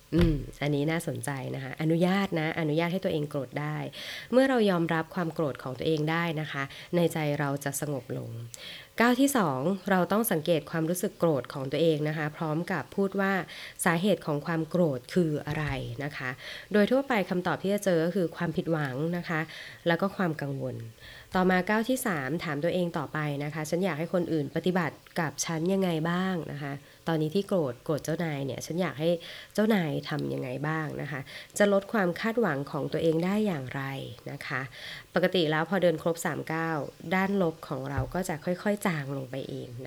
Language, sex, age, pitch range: Thai, female, 20-39, 145-185 Hz